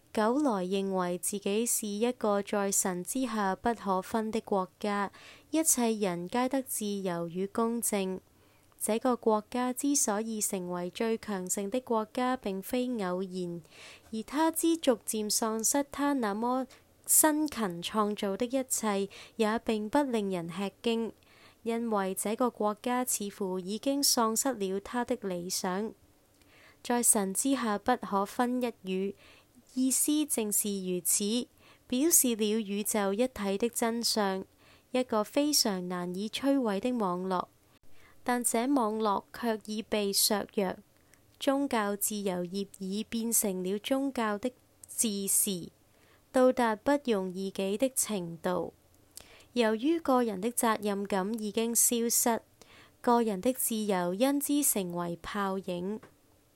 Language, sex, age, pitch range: Chinese, female, 20-39, 195-245 Hz